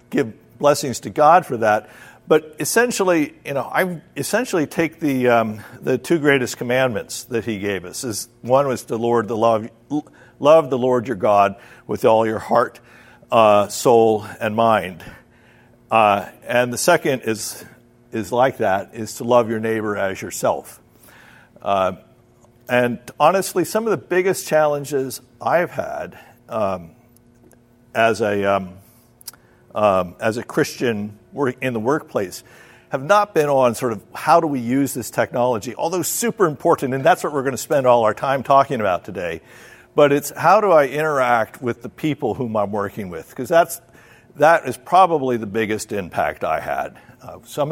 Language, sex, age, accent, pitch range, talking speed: English, male, 50-69, American, 115-140 Hz, 165 wpm